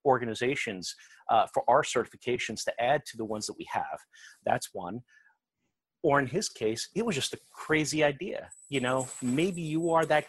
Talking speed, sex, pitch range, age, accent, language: 180 wpm, male, 115-145 Hz, 30-49, American, English